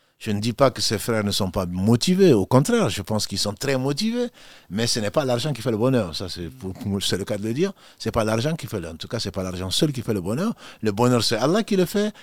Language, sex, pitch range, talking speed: French, male, 105-140 Hz, 310 wpm